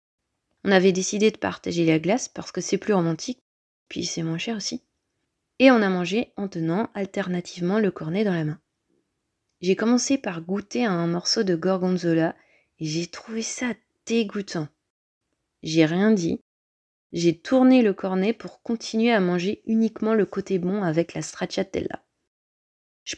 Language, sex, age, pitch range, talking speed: French, female, 30-49, 165-210 Hz, 160 wpm